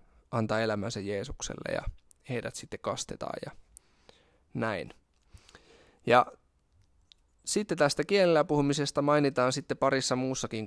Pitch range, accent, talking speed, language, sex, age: 100-130 Hz, native, 100 wpm, Finnish, male, 20-39